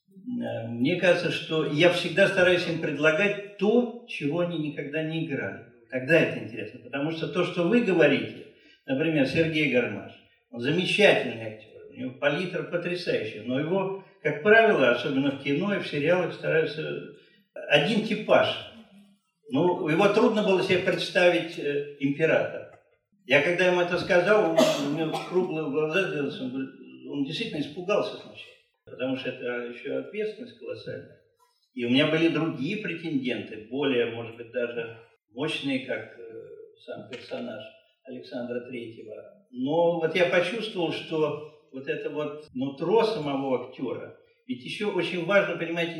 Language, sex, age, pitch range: Russian, male, 50-69, 140-200 Hz